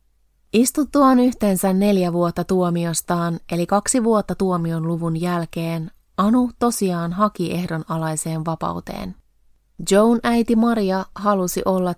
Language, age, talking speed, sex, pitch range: Finnish, 20-39, 105 wpm, female, 170-205 Hz